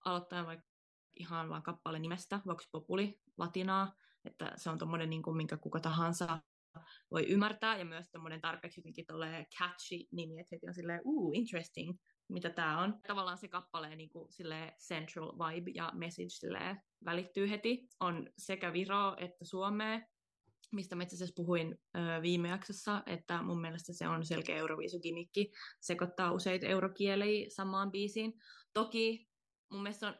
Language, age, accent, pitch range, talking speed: Finnish, 20-39, native, 165-200 Hz, 145 wpm